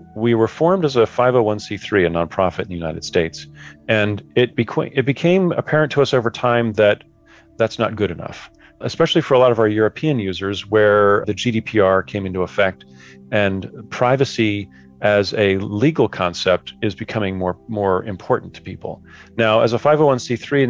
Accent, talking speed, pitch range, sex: American, 170 wpm, 95-120 Hz, male